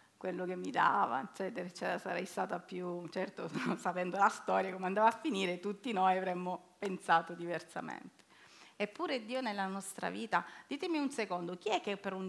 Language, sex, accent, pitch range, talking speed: Italian, female, native, 180-260 Hz, 175 wpm